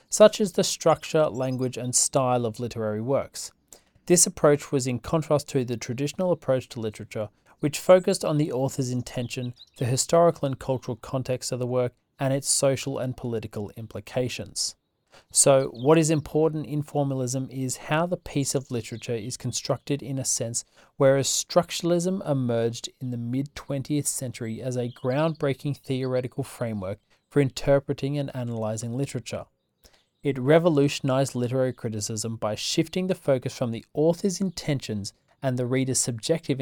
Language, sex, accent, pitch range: English, male, Australian, 120-145 Hz